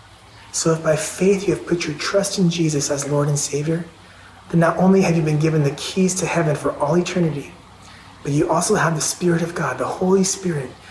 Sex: male